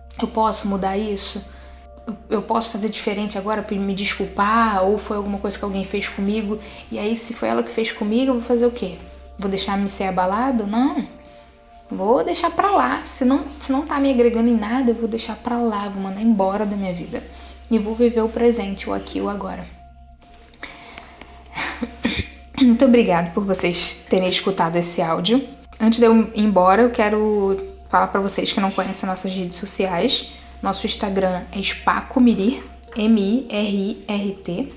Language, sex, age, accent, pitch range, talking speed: Portuguese, female, 10-29, Brazilian, 195-230 Hz, 180 wpm